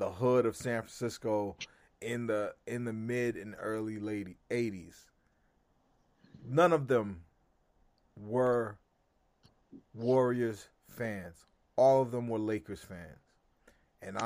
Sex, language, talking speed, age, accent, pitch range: male, English, 115 wpm, 30-49, American, 95-125 Hz